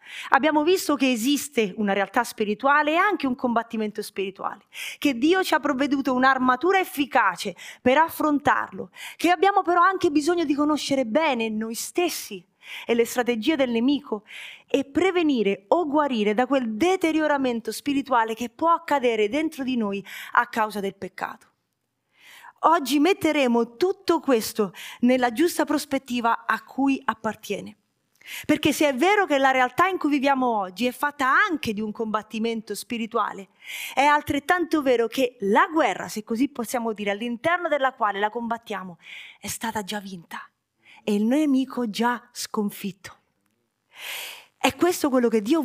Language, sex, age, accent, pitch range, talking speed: Italian, female, 30-49, native, 220-305 Hz, 145 wpm